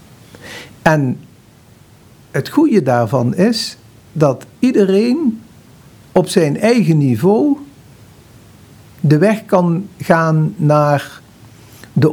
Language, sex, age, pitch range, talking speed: Dutch, male, 60-79, 130-195 Hz, 85 wpm